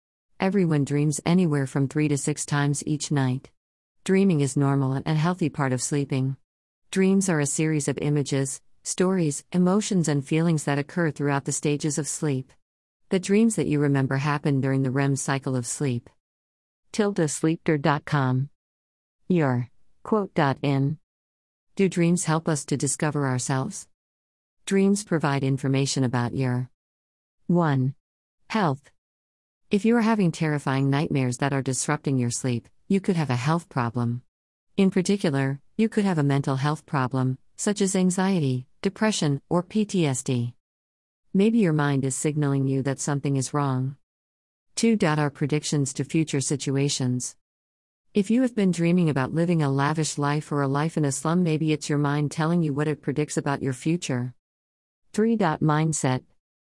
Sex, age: female, 50-69